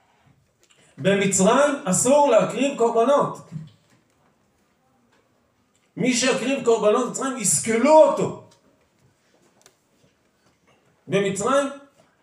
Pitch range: 160-240 Hz